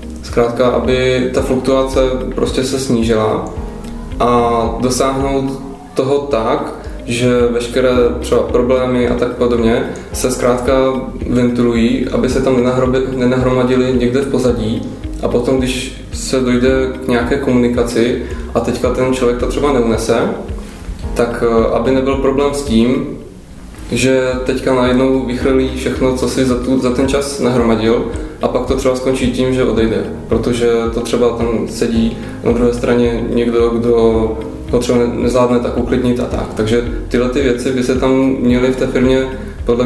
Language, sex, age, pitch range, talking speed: Czech, male, 20-39, 115-130 Hz, 150 wpm